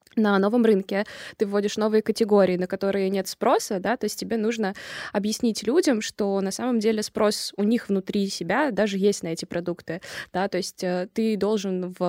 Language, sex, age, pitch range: Russian, female, 20-39, 185-225 Hz